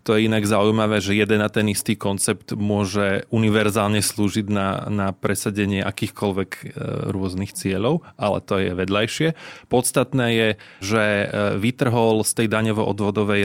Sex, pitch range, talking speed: male, 100-125 Hz, 135 wpm